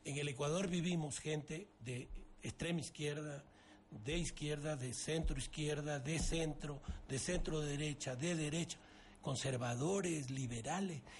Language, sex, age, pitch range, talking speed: Spanish, male, 60-79, 150-195 Hz, 120 wpm